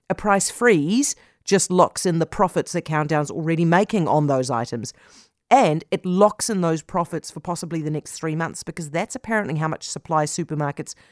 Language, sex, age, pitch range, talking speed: English, female, 40-59, 155-210 Hz, 185 wpm